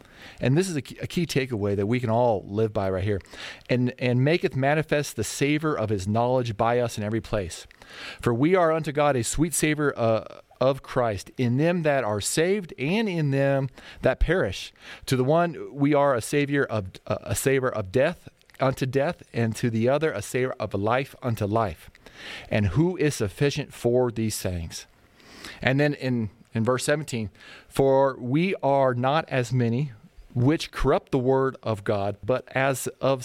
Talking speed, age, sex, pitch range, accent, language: 190 wpm, 40-59, male, 115-145 Hz, American, English